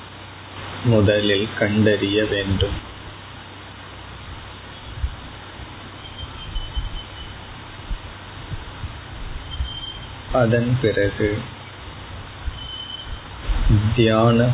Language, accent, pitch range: Tamil, native, 100-110 Hz